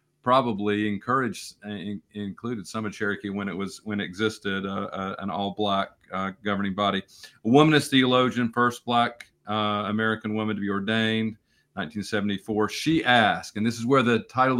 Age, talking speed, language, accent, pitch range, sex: 40-59, 170 wpm, English, American, 105-125 Hz, male